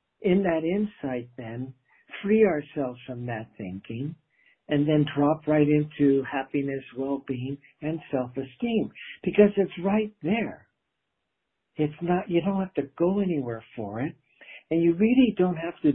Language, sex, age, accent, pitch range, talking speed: English, male, 60-79, American, 140-180 Hz, 145 wpm